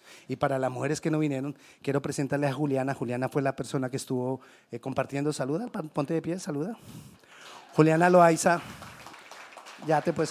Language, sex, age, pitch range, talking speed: Spanish, male, 30-49, 145-205 Hz, 170 wpm